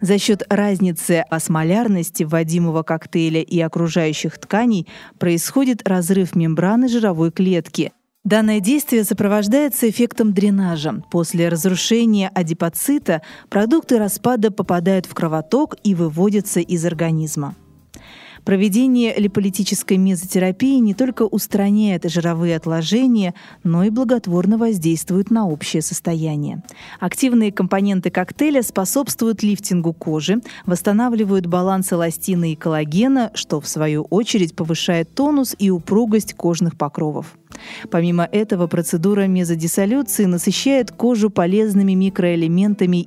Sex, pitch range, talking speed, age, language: female, 170-215 Hz, 105 wpm, 20-39, Russian